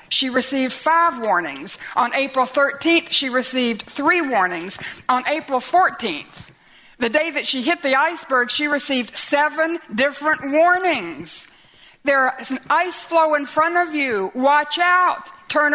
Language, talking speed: English, 145 wpm